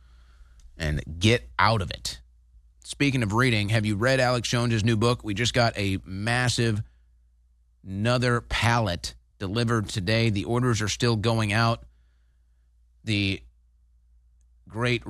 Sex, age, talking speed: male, 30-49, 125 wpm